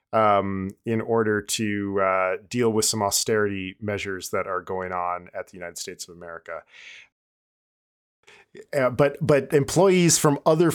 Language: English